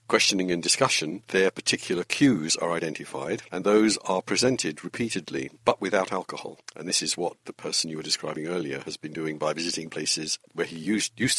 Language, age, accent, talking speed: English, 60-79, British, 190 wpm